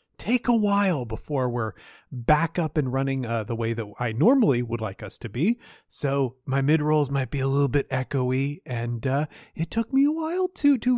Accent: American